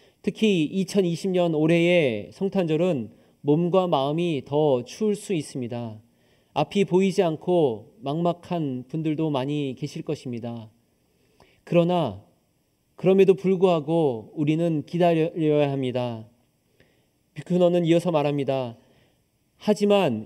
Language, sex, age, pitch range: Korean, male, 40-59, 145-190 Hz